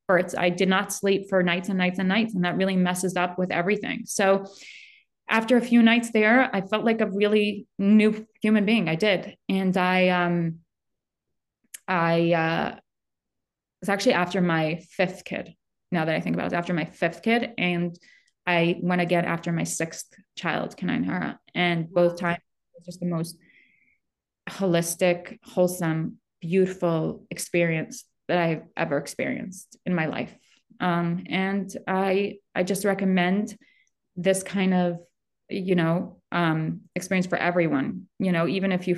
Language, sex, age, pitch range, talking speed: English, female, 20-39, 175-205 Hz, 160 wpm